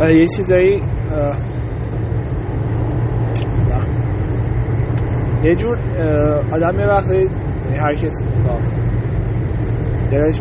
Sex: male